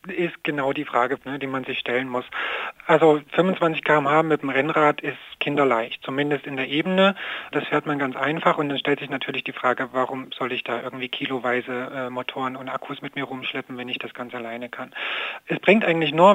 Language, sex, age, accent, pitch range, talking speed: German, male, 40-59, German, 130-155 Hz, 210 wpm